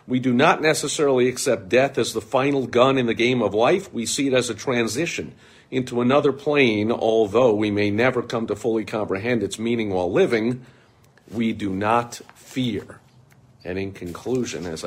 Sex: male